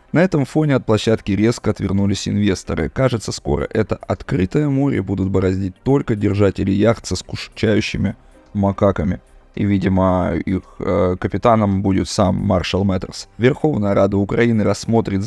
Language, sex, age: Russian, male, 20-39